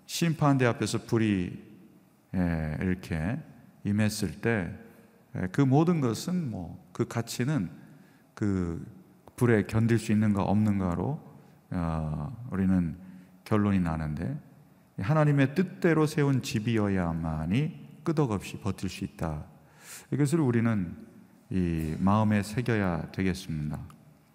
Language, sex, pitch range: Korean, male, 95-140 Hz